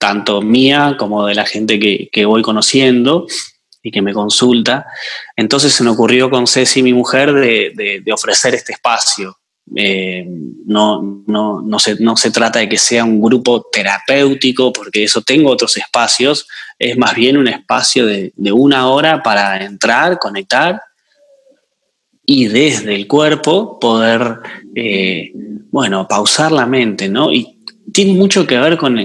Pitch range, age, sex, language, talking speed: 110-170 Hz, 20-39, male, Spanish, 160 wpm